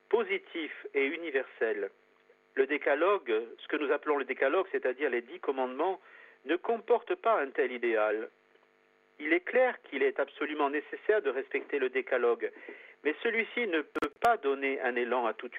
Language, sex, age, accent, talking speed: French, male, 50-69, French, 160 wpm